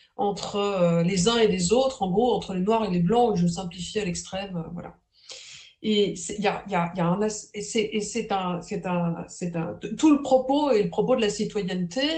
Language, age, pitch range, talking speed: French, 50-69, 200-265 Hz, 175 wpm